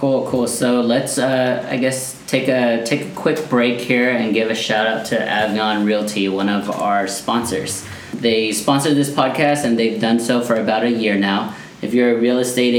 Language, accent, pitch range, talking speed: English, American, 105-125 Hz, 205 wpm